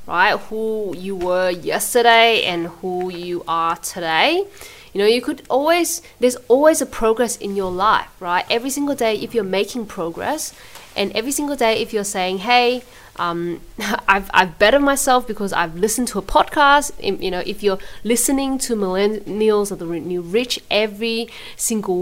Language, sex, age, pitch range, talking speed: English, female, 20-39, 190-245 Hz, 170 wpm